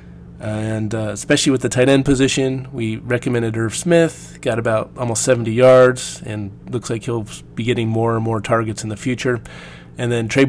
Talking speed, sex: 190 wpm, male